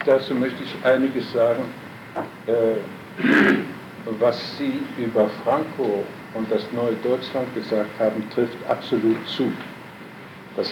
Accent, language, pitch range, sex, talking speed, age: German, German, 115-140 Hz, male, 105 wpm, 70-89